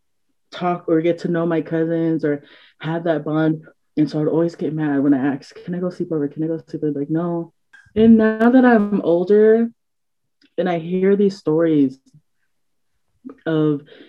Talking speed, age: 190 wpm, 20-39